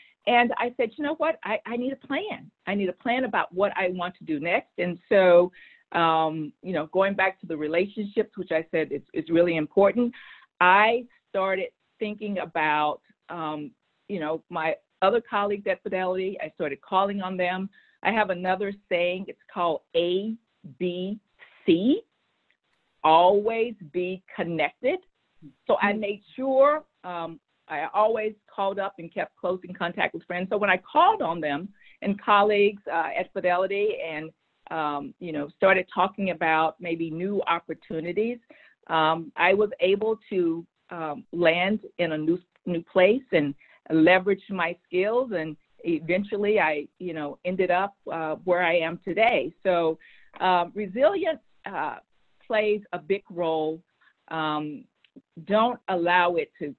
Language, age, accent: English, 50-69, American